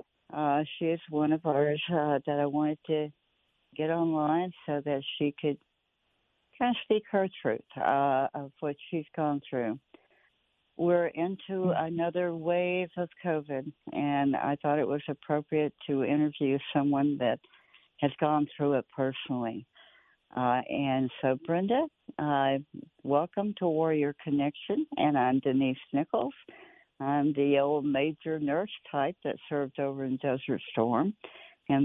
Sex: female